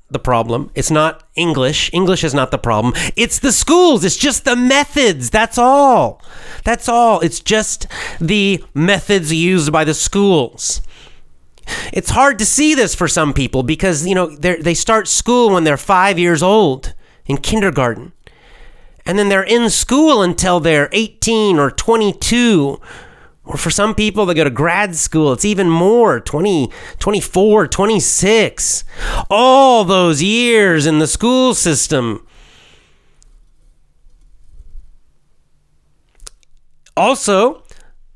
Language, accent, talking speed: English, American, 140 wpm